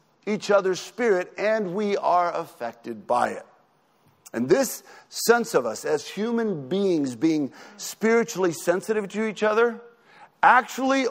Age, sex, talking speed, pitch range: 50-69, male, 130 wpm, 165-230 Hz